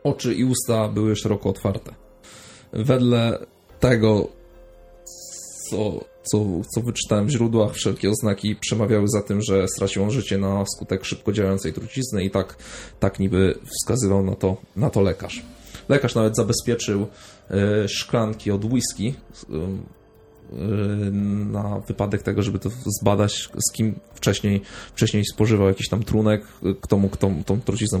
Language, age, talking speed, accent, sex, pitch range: Polish, 20-39, 130 wpm, native, male, 100-115 Hz